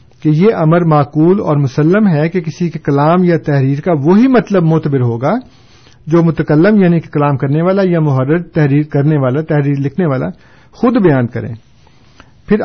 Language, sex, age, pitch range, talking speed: Urdu, male, 50-69, 135-185 Hz, 175 wpm